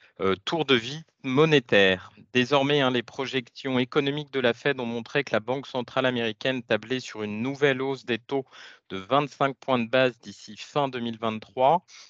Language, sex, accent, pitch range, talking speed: French, male, French, 115-140 Hz, 175 wpm